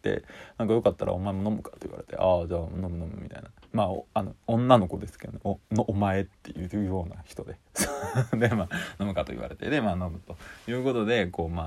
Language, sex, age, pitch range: Japanese, male, 20-39, 95-125 Hz